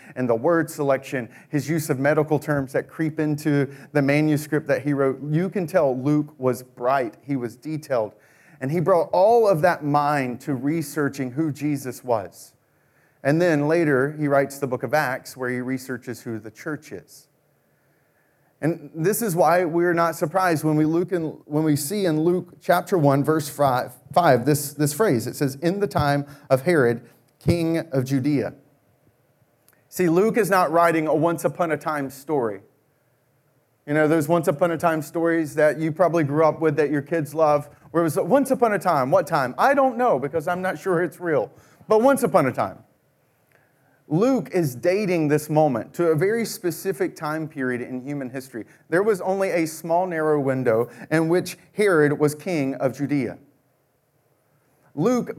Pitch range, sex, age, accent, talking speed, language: 140-175 Hz, male, 30-49, American, 185 wpm, English